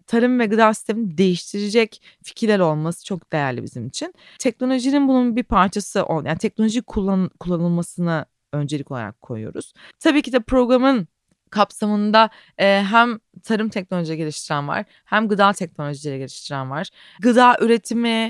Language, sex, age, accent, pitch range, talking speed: Turkish, female, 30-49, native, 175-240 Hz, 130 wpm